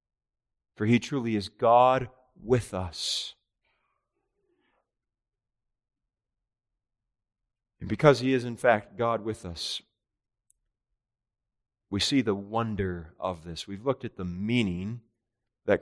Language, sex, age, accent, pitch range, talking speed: English, male, 40-59, American, 105-125 Hz, 105 wpm